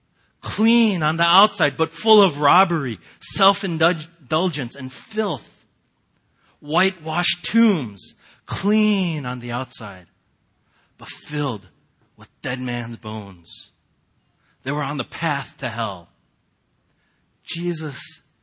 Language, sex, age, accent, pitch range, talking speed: English, male, 40-59, American, 105-140 Hz, 100 wpm